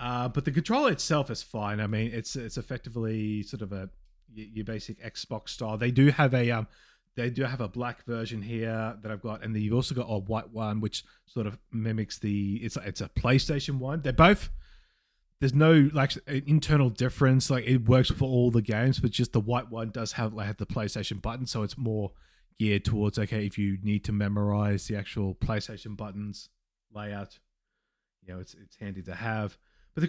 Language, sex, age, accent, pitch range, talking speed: English, male, 20-39, Australian, 105-130 Hz, 205 wpm